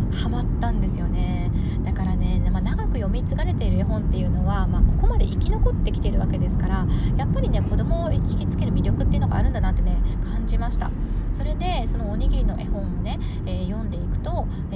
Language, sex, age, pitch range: Japanese, female, 20-39, 90-95 Hz